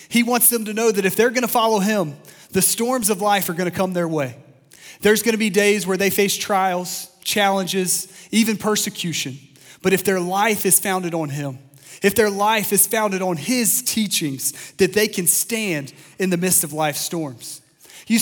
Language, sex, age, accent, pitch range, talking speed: English, male, 30-49, American, 170-215 Hz, 200 wpm